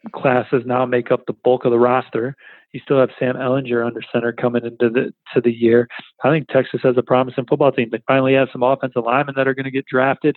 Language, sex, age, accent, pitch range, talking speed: English, male, 40-59, American, 120-135 Hz, 245 wpm